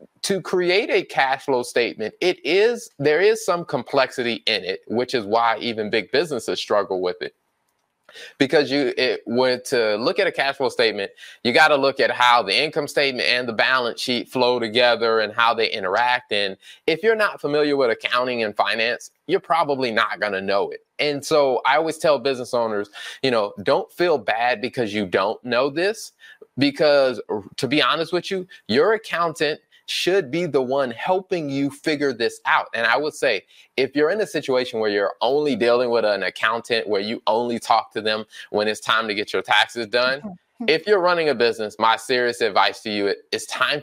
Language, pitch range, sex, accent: English, 115-170 Hz, male, American